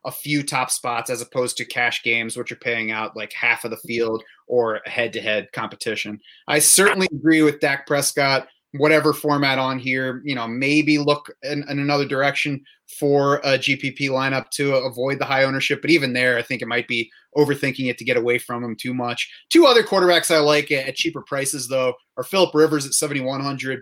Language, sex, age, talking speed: English, male, 30-49, 205 wpm